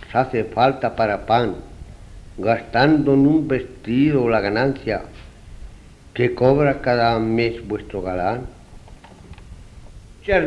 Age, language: 60-79, Spanish